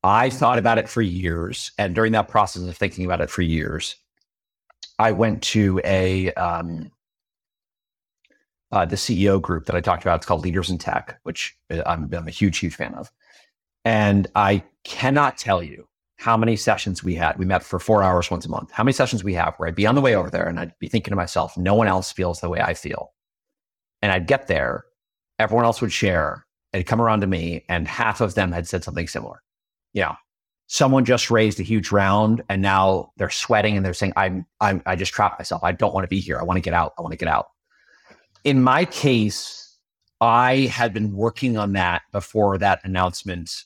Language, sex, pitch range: English, male, 90-110 Hz